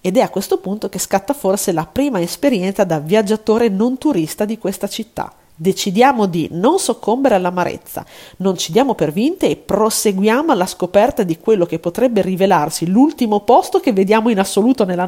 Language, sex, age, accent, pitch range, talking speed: Italian, female, 40-59, native, 175-245 Hz, 175 wpm